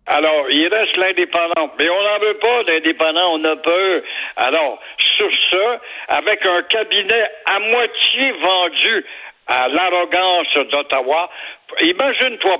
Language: French